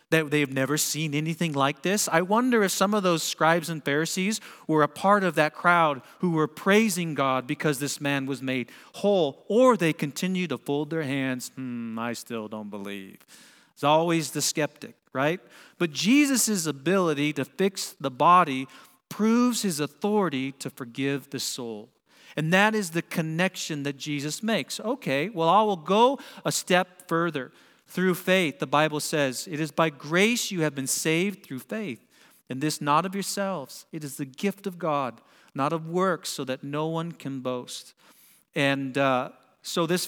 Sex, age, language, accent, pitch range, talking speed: male, 40-59, English, American, 135-175 Hz, 175 wpm